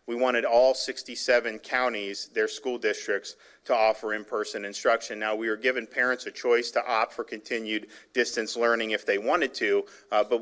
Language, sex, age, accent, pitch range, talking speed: English, male, 40-59, American, 115-145 Hz, 180 wpm